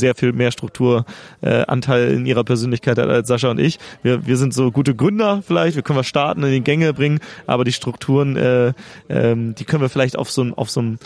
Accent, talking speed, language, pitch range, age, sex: German, 215 wpm, German, 125-155 Hz, 30-49, male